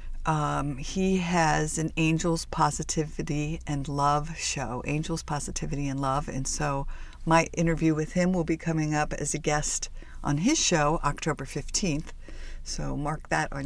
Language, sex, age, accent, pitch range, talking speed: English, female, 50-69, American, 145-170 Hz, 155 wpm